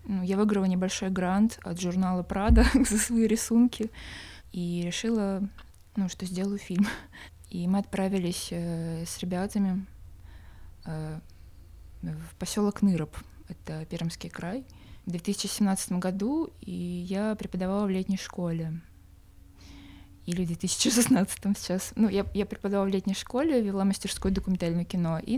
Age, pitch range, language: 20-39, 170-200 Hz, Russian